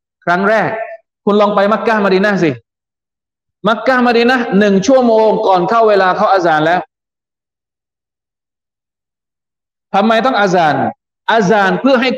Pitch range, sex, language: 145-200 Hz, male, Thai